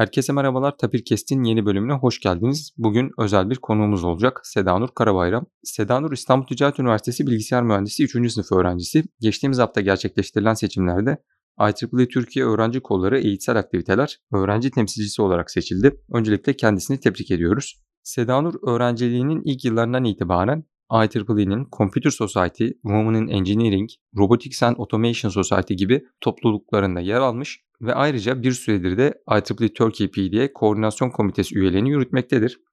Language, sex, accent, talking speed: Turkish, male, native, 130 wpm